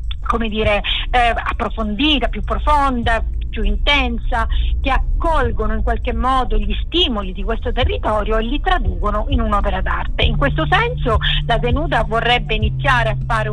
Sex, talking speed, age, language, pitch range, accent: female, 145 wpm, 50-69, Italian, 75-105 Hz, native